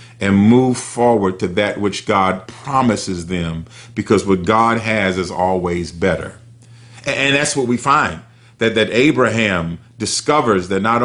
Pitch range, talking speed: 100-120 Hz, 150 wpm